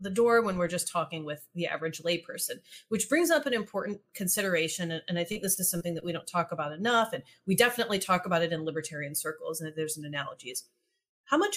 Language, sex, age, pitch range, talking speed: English, female, 30-49, 160-205 Hz, 225 wpm